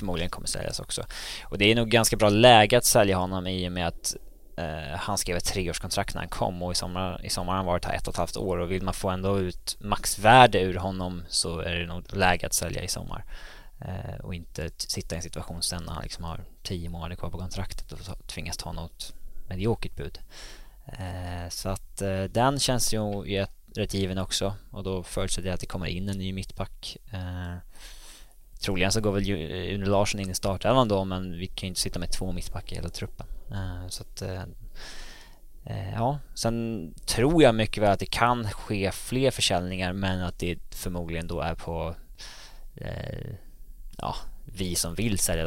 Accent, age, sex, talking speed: Norwegian, 20-39, male, 200 wpm